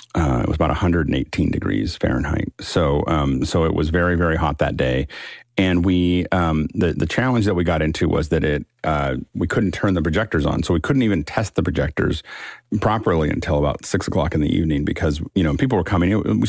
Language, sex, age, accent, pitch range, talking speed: English, male, 40-59, American, 80-95 Hz, 220 wpm